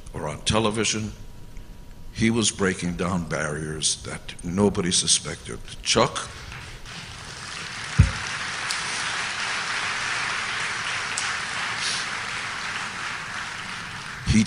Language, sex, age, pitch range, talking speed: English, male, 60-79, 90-115 Hz, 55 wpm